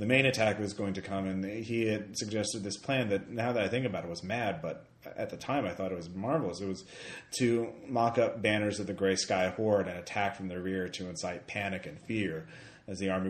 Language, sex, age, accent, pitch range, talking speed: English, male, 30-49, American, 90-110 Hz, 250 wpm